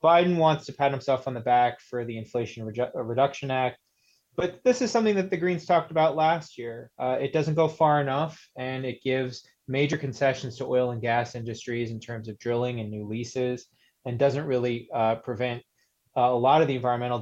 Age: 20-39